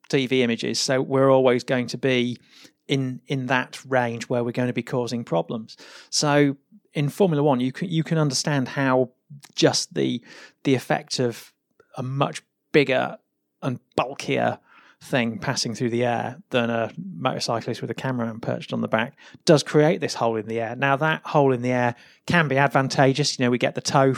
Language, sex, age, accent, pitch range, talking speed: English, male, 30-49, British, 125-145 Hz, 190 wpm